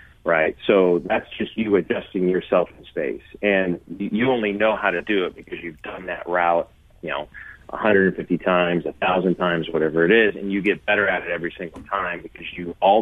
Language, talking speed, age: English, 205 wpm, 30-49